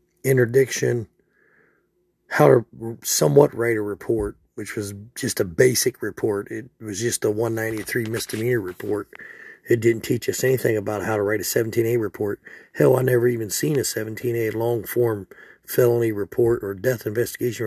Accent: American